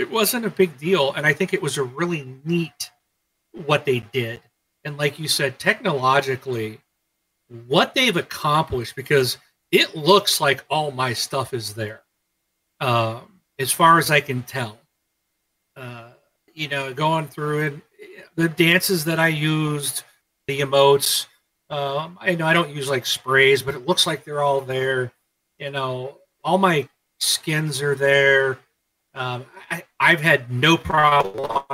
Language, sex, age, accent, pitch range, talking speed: English, male, 40-59, American, 125-160 Hz, 155 wpm